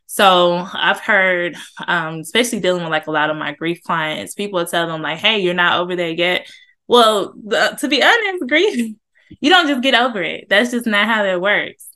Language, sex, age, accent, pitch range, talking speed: English, female, 20-39, American, 170-215 Hz, 205 wpm